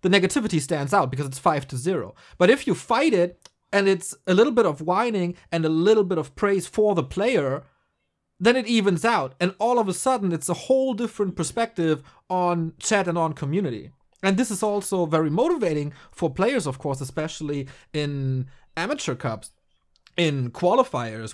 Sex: male